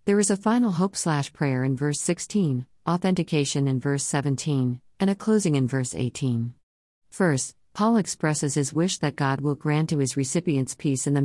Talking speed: 175 wpm